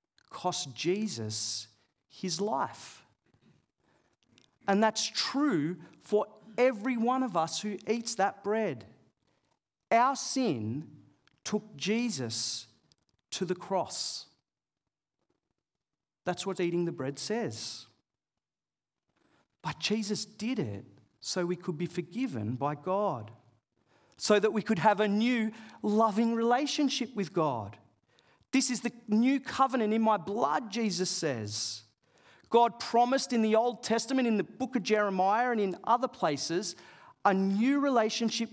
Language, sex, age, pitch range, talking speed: English, male, 40-59, 165-240 Hz, 125 wpm